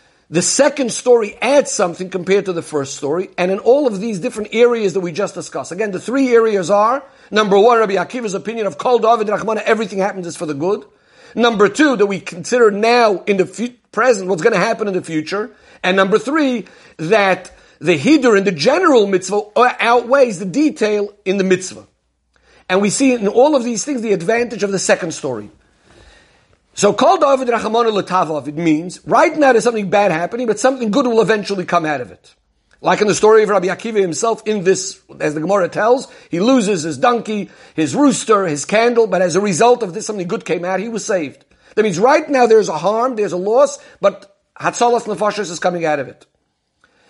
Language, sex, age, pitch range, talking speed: English, male, 50-69, 185-235 Hz, 205 wpm